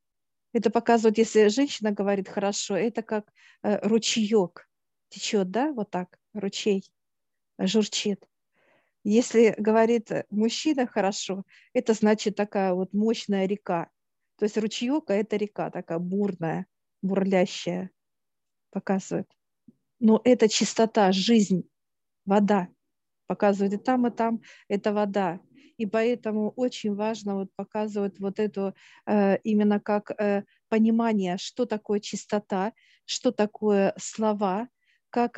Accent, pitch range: native, 195-225 Hz